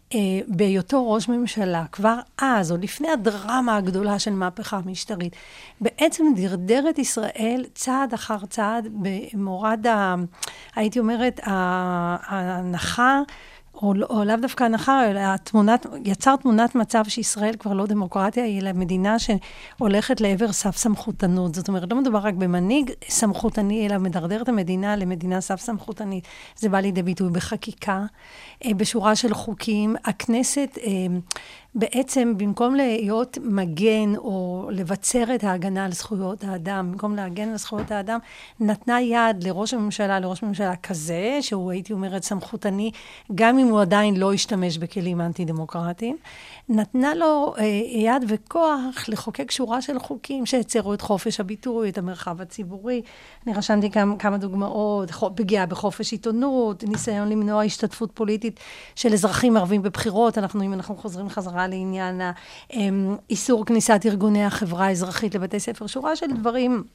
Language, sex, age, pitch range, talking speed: Hebrew, female, 40-59, 195-230 Hz, 135 wpm